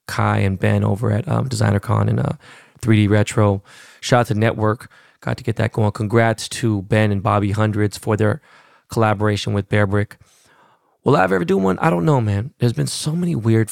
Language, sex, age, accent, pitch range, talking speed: English, male, 20-39, American, 105-125 Hz, 195 wpm